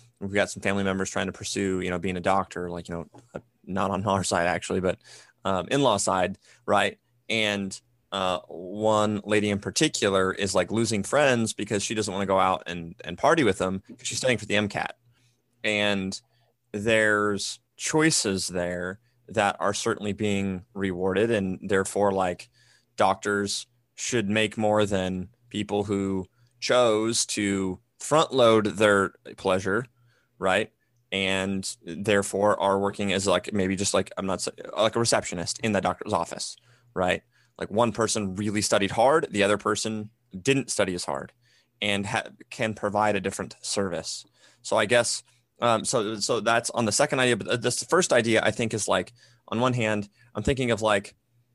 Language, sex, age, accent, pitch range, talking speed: English, male, 20-39, American, 95-115 Hz, 170 wpm